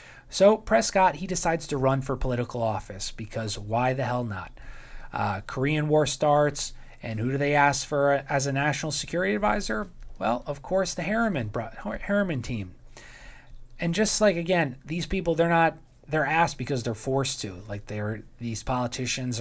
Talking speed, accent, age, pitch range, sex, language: 165 wpm, American, 20-39, 120-150 Hz, male, English